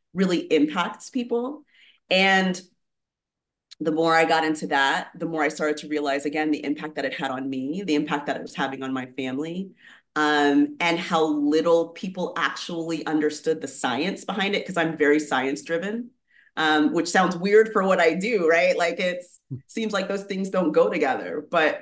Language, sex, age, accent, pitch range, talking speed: English, female, 30-49, American, 150-185 Hz, 185 wpm